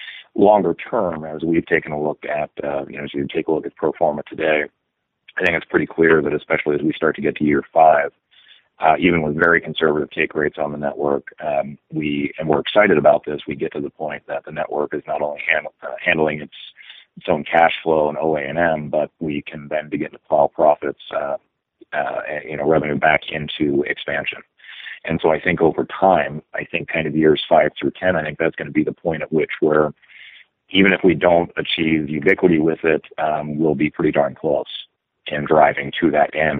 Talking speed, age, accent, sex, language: 215 wpm, 40-59, American, male, English